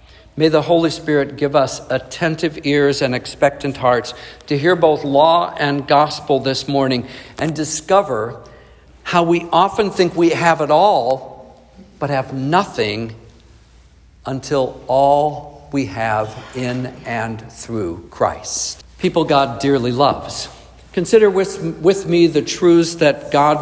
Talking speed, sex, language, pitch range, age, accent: 130 wpm, male, English, 125-170 Hz, 60-79, American